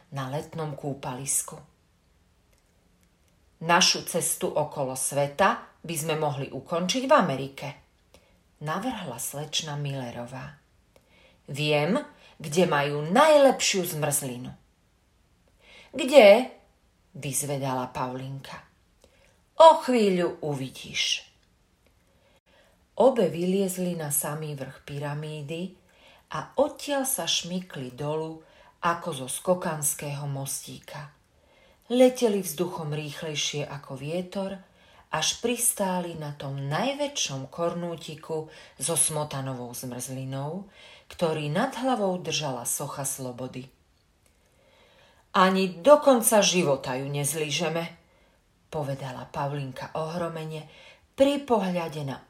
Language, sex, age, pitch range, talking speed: Slovak, female, 40-59, 135-180 Hz, 85 wpm